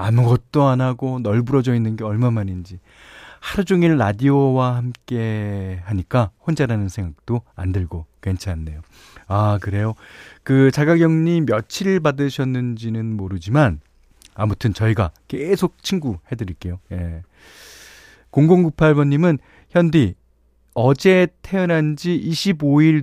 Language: Korean